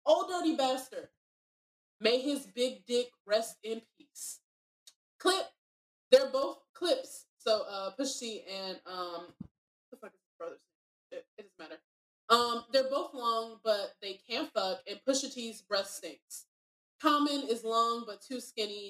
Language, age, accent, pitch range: English, 20-39, American, 215-270 Hz